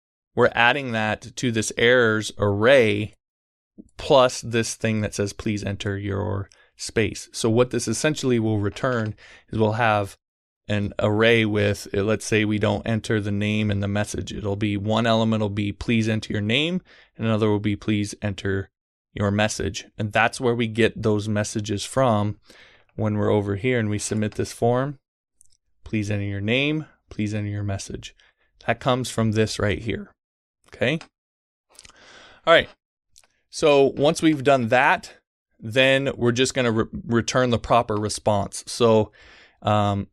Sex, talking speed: male, 160 wpm